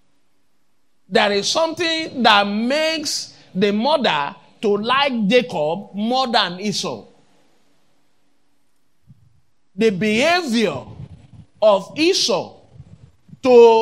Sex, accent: male, Nigerian